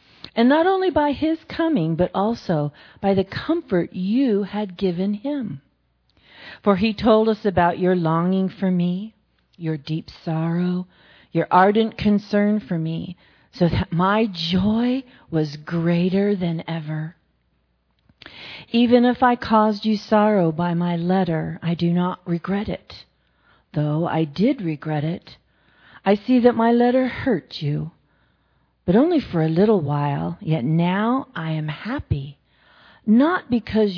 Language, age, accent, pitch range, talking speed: English, 40-59, American, 165-225 Hz, 140 wpm